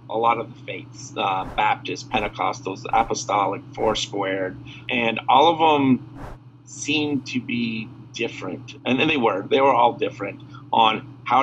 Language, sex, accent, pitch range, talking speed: English, male, American, 120-140 Hz, 150 wpm